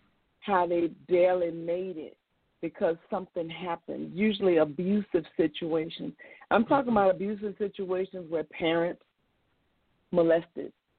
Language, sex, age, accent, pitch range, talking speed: English, female, 40-59, American, 160-200 Hz, 105 wpm